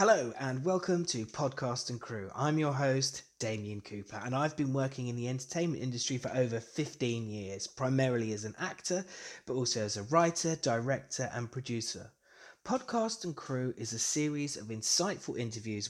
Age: 20-39